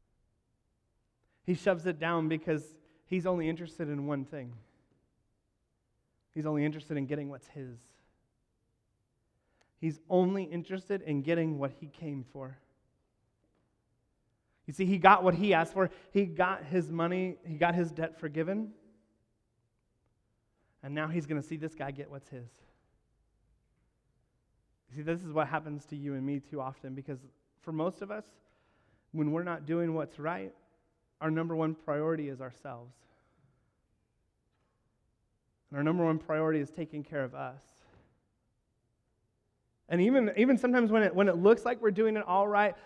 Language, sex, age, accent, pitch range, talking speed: English, male, 30-49, American, 125-200 Hz, 155 wpm